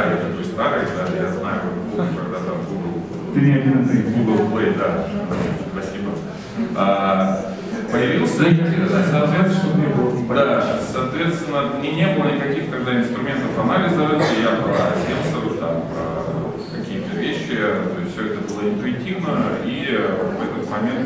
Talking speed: 115 wpm